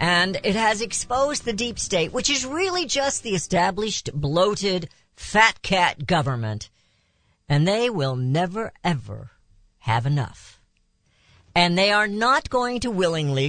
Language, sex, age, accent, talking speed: English, female, 50-69, American, 140 wpm